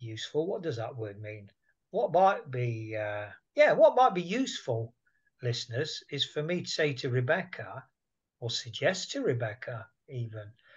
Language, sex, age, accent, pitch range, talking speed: English, male, 50-69, British, 125-165 Hz, 155 wpm